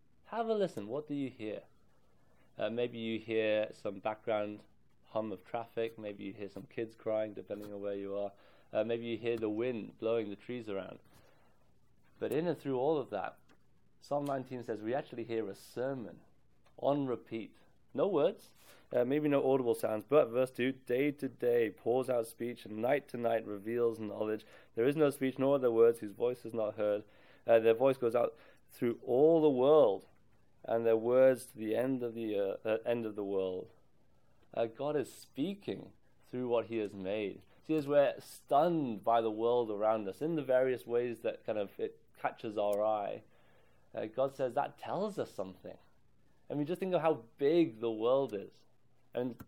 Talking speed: 190 wpm